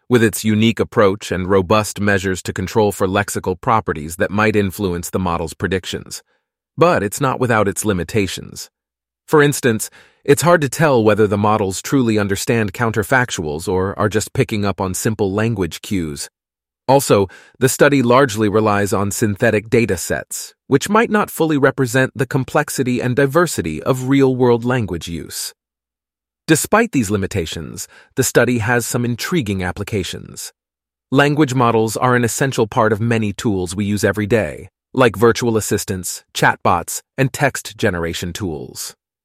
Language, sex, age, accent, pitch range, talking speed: English, male, 30-49, American, 95-125 Hz, 150 wpm